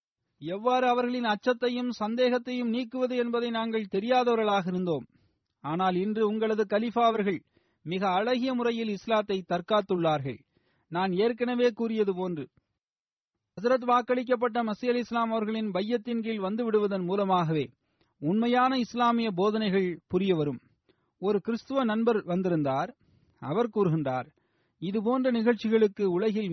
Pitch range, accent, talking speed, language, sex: 185-235 Hz, native, 105 wpm, Tamil, male